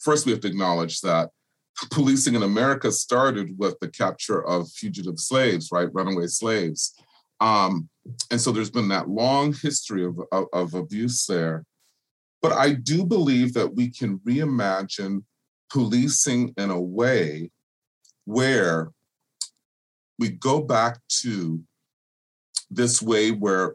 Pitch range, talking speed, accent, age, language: 100-140 Hz, 130 wpm, American, 40-59, English